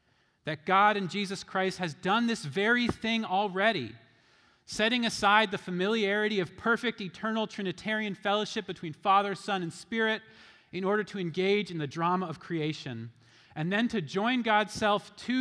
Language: English